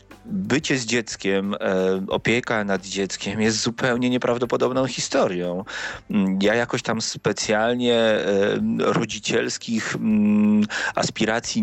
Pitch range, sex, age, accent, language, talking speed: 100-125 Hz, male, 30-49, native, Polish, 85 wpm